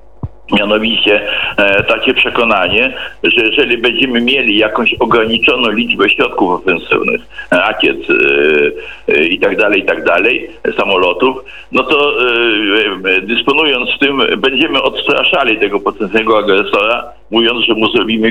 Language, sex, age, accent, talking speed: Polish, male, 60-79, native, 125 wpm